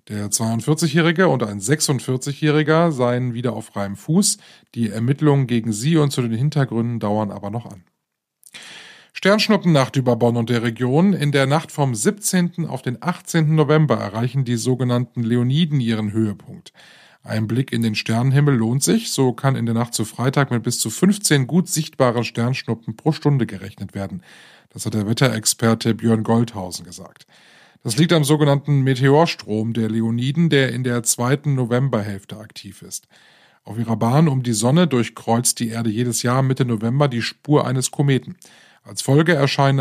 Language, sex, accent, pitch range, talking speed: German, male, German, 115-145 Hz, 165 wpm